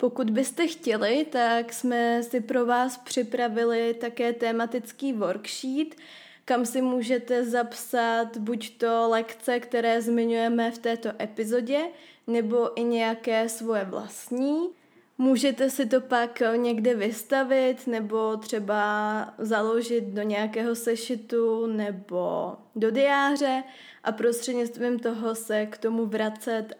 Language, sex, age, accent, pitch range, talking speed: Czech, female, 20-39, native, 225-255 Hz, 115 wpm